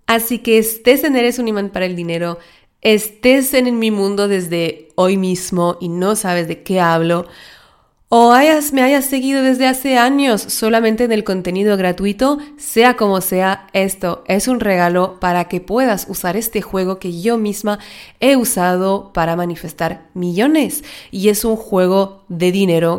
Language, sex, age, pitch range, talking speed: Spanish, female, 30-49, 185-240 Hz, 160 wpm